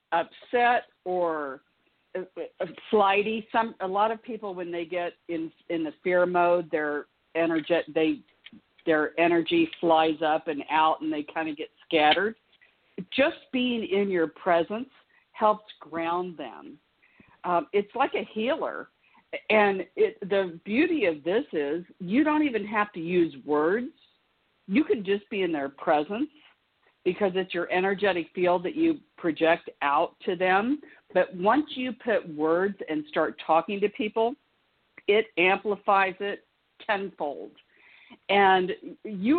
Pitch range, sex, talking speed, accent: 170-225 Hz, female, 145 wpm, American